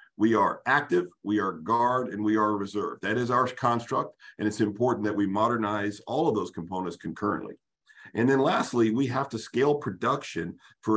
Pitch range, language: 100-125 Hz, English